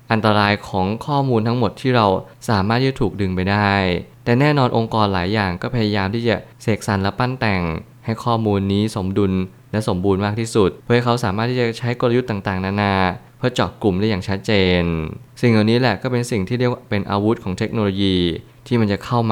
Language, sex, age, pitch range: Thai, male, 20-39, 100-120 Hz